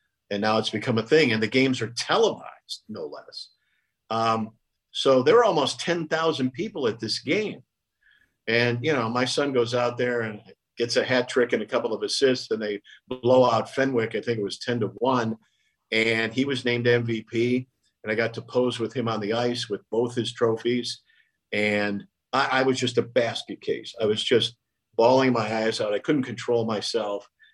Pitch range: 110-130 Hz